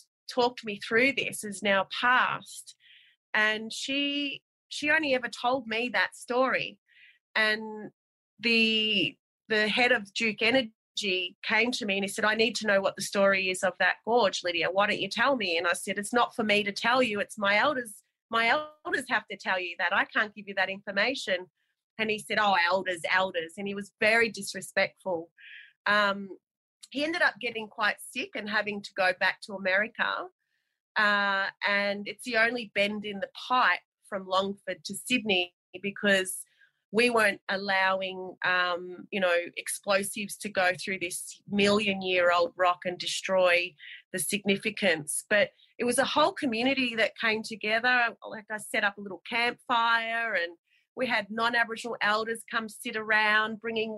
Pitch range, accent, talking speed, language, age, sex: 190-230 Hz, Australian, 170 wpm, English, 30-49, female